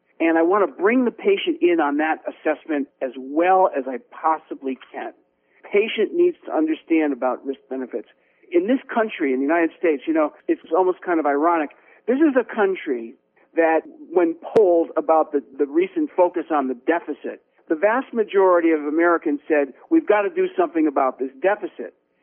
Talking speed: 180 wpm